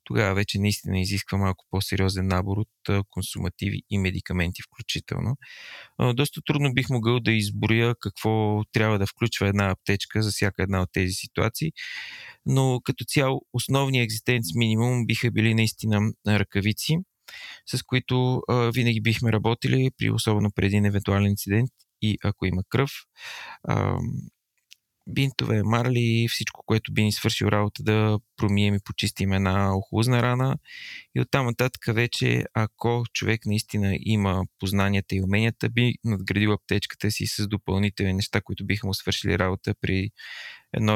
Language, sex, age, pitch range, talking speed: Bulgarian, male, 20-39, 100-120 Hz, 140 wpm